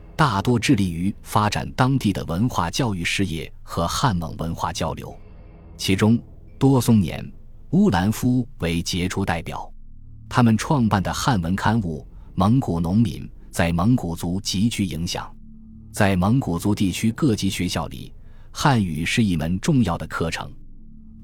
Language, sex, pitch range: Chinese, male, 85-115 Hz